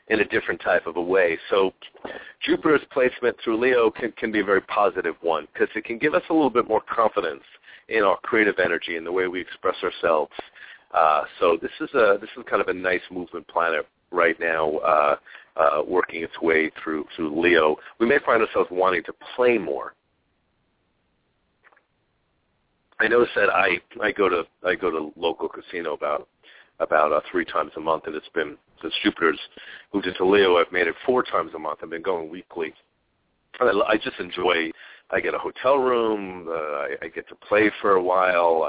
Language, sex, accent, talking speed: English, male, American, 195 wpm